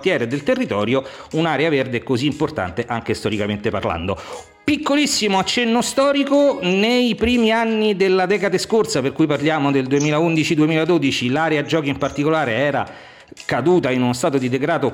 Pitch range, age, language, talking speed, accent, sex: 135-205 Hz, 50-69, Italian, 140 wpm, native, male